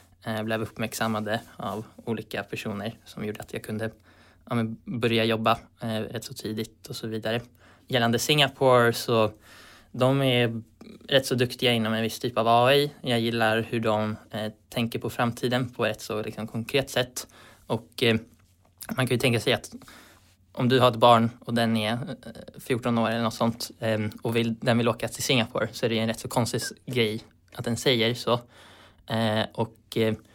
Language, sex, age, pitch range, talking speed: Swedish, male, 20-39, 110-120 Hz, 175 wpm